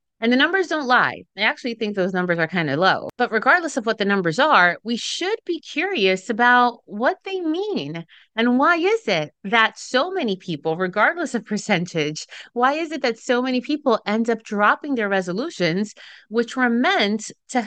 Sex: female